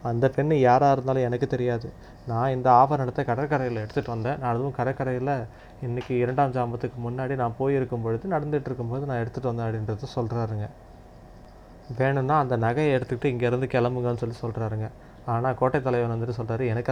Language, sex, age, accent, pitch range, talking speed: Tamil, male, 20-39, native, 115-130 Hz, 150 wpm